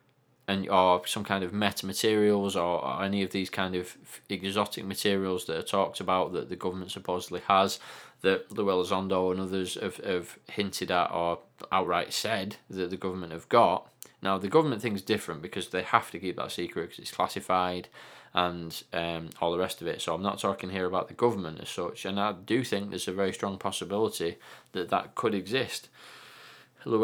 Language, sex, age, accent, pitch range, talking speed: English, male, 20-39, British, 95-120 Hz, 195 wpm